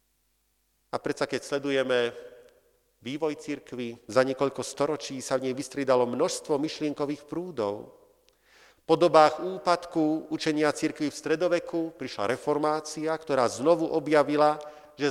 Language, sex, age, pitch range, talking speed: Slovak, male, 50-69, 140-170 Hz, 115 wpm